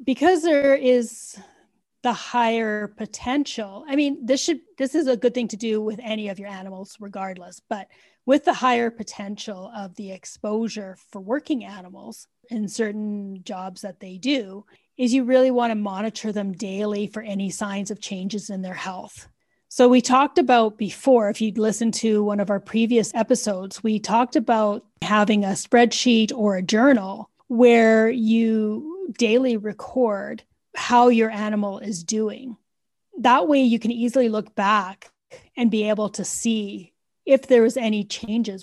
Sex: female